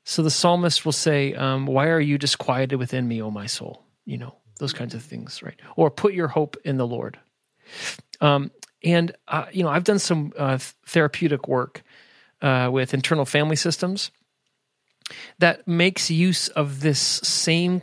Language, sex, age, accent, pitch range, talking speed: English, male, 40-59, American, 135-165 Hz, 170 wpm